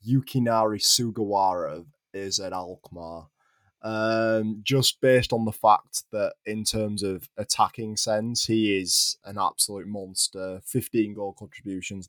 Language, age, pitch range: English, 20-39, 100-110 Hz